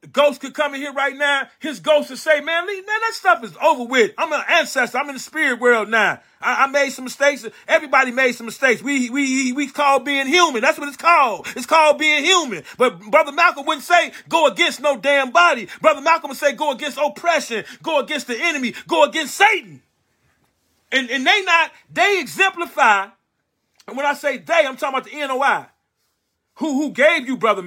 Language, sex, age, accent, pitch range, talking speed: English, male, 40-59, American, 250-310 Hz, 210 wpm